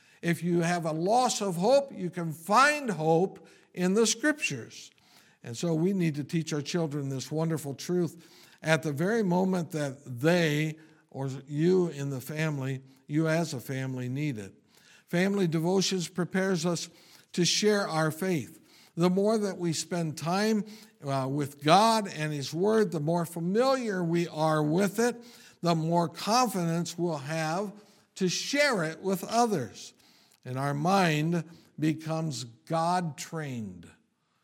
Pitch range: 145-180 Hz